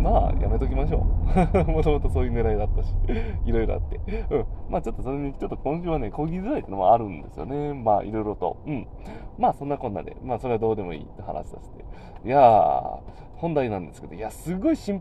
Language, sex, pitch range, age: Japanese, male, 90-140 Hz, 20-39